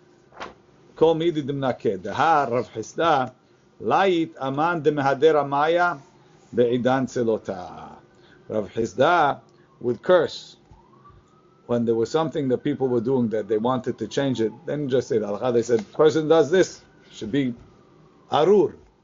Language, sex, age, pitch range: English, male, 50-69, 125-160 Hz